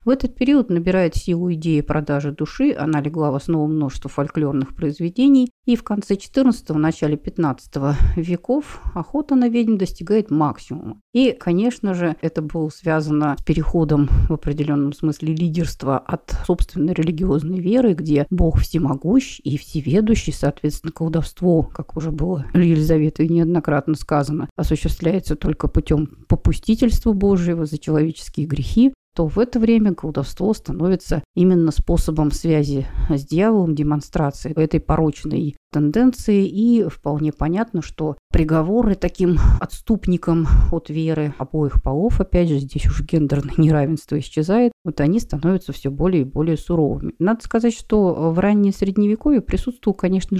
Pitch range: 150-195 Hz